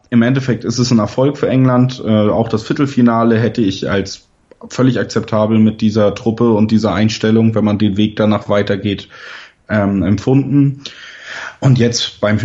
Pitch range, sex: 100-110 Hz, male